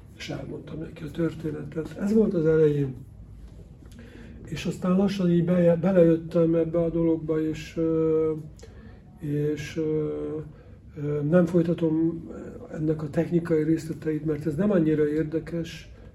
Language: Hungarian